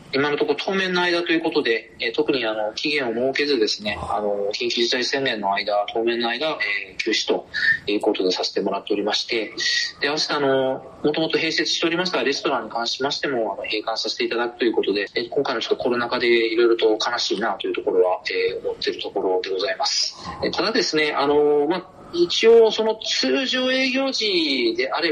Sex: male